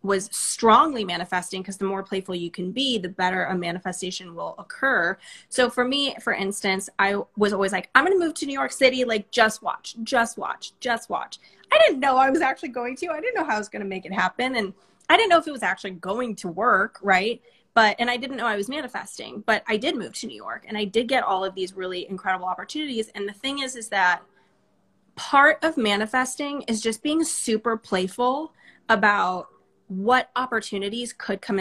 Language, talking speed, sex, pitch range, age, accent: English, 220 wpm, female, 195-250 Hz, 20-39, American